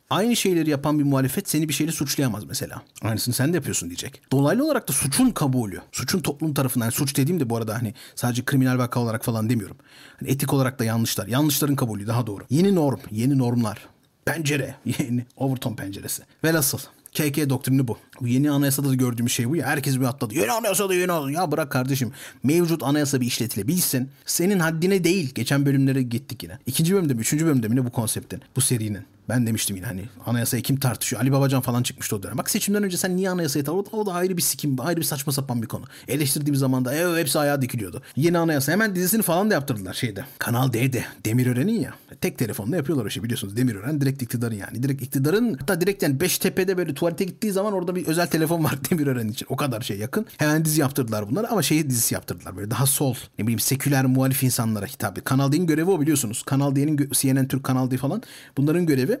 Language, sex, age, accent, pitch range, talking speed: Turkish, male, 40-59, native, 125-155 Hz, 215 wpm